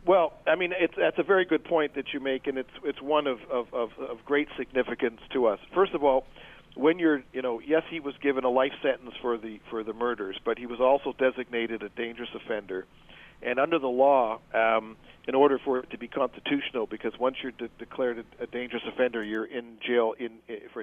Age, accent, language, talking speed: 50-69, American, English, 220 wpm